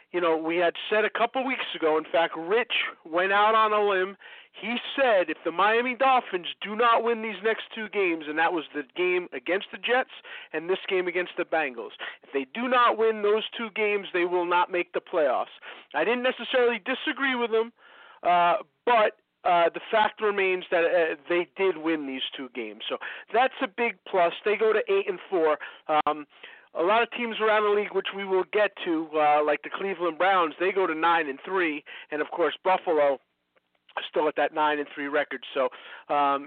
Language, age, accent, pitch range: English, 40-59, American, 165-220 Hz